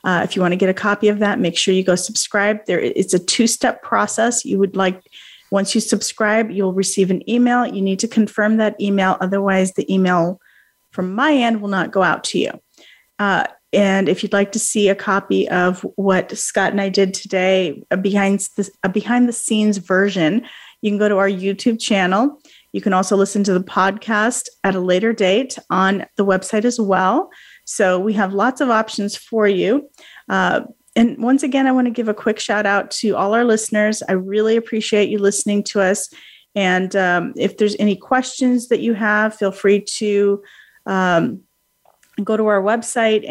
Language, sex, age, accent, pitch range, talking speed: English, female, 40-59, American, 195-225 Hz, 195 wpm